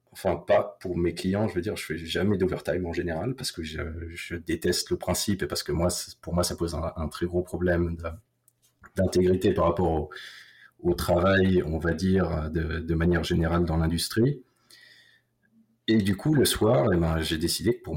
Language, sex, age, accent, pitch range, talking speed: French, male, 30-49, French, 80-100 Hz, 205 wpm